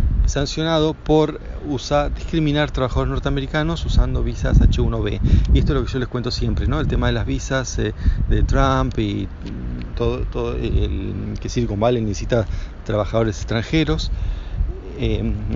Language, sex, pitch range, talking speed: Spanish, male, 105-130 Hz, 150 wpm